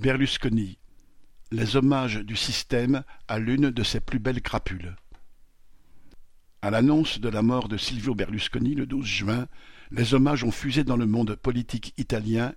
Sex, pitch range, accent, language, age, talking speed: male, 110-130 Hz, French, French, 60-79, 155 wpm